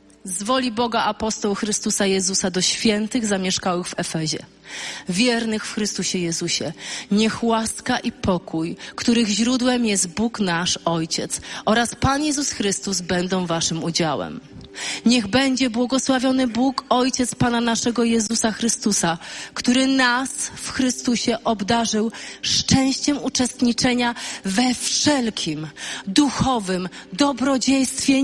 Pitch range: 205-285 Hz